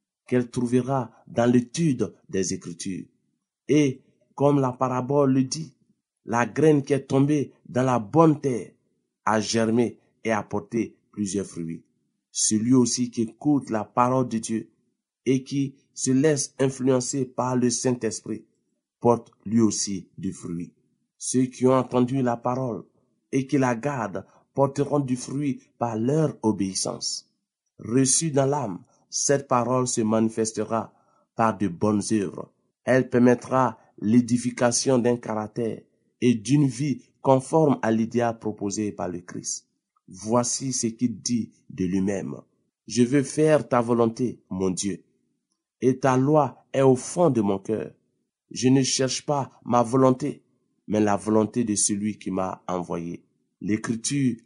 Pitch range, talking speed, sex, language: 110-130 Hz, 140 wpm, male, French